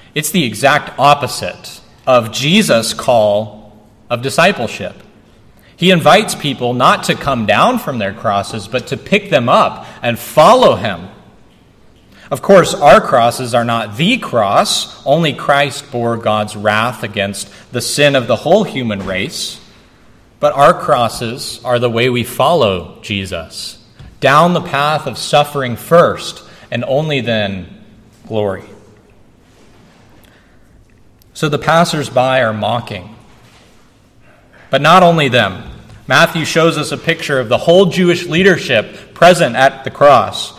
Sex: male